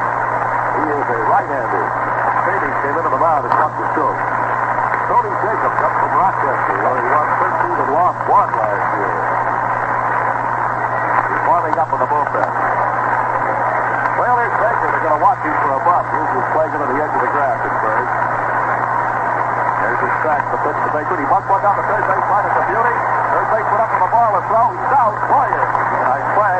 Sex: male